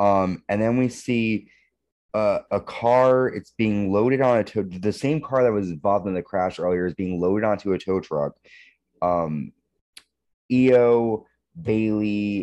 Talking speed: 165 wpm